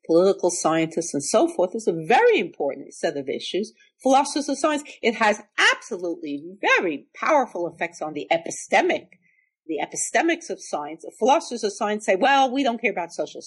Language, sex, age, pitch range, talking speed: English, female, 50-69, 170-255 Hz, 170 wpm